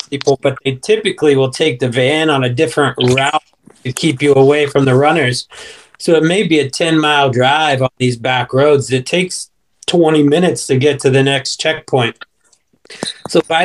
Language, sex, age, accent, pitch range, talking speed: English, male, 30-49, American, 125-145 Hz, 190 wpm